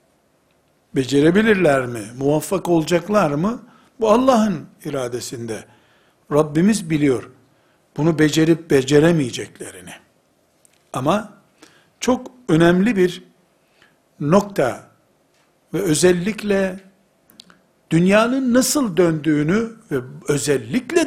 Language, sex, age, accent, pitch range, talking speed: Turkish, male, 60-79, native, 155-205 Hz, 70 wpm